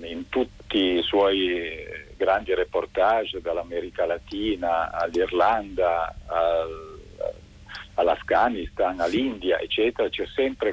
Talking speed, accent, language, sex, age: 80 wpm, native, Italian, male, 50-69